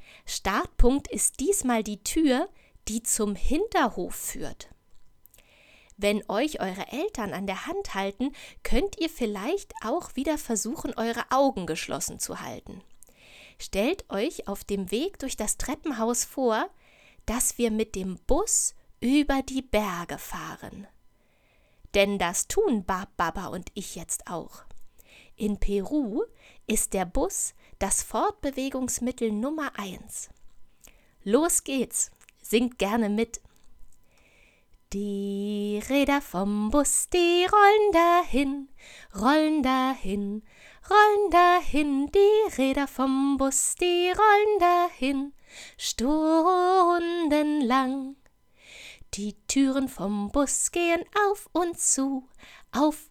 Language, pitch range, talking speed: German, 215-325 Hz, 110 wpm